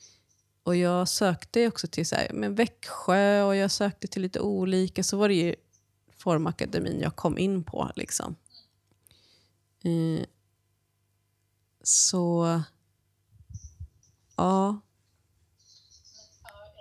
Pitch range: 155-215 Hz